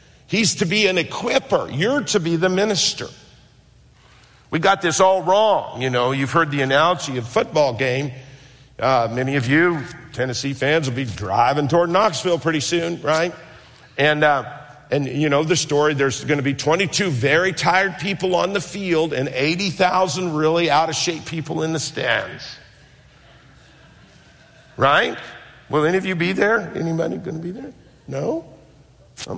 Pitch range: 130-170 Hz